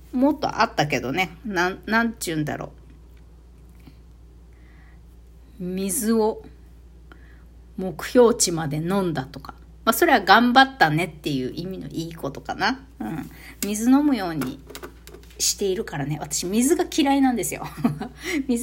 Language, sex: Japanese, female